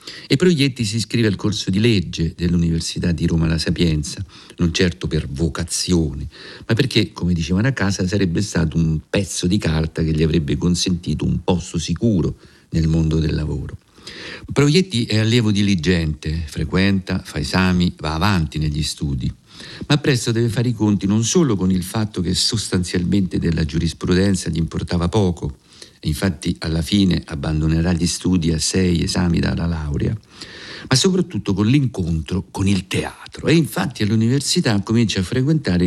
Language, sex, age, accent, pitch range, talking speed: Italian, male, 50-69, native, 85-110 Hz, 155 wpm